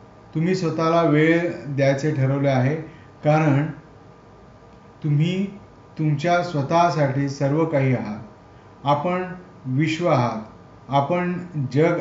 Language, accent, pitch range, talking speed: Marathi, native, 130-165 Hz, 75 wpm